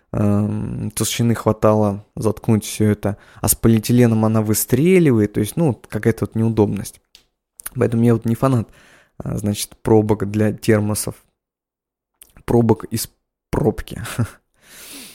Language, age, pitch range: Russian, 20-39, 105-125 Hz